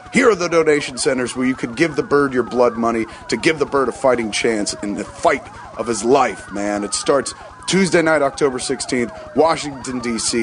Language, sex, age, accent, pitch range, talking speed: English, male, 30-49, American, 125-155 Hz, 205 wpm